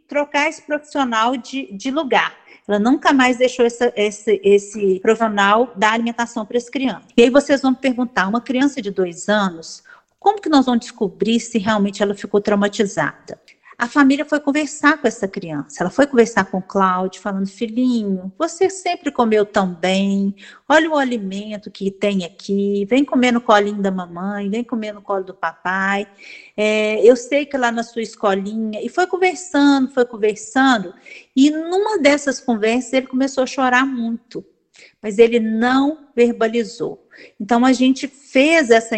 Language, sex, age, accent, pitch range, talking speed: Portuguese, female, 40-59, Brazilian, 205-270 Hz, 165 wpm